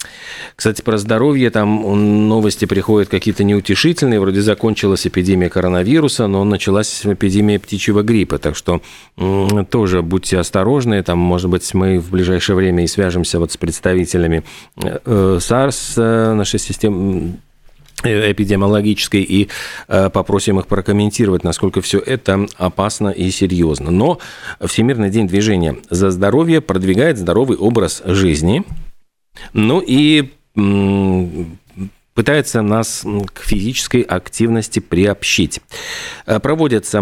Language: Russian